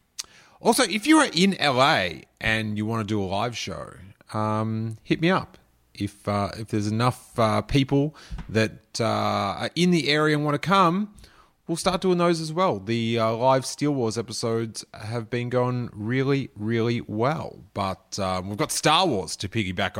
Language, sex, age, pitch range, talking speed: English, male, 30-49, 105-150 Hz, 185 wpm